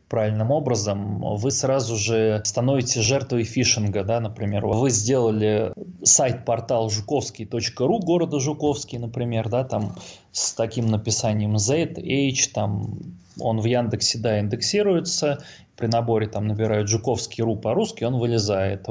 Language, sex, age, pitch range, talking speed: Russian, male, 20-39, 105-130 Hz, 125 wpm